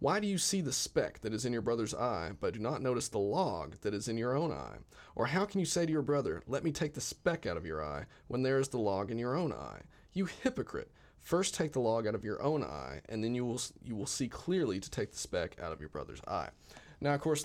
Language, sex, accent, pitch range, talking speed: English, male, American, 90-140 Hz, 280 wpm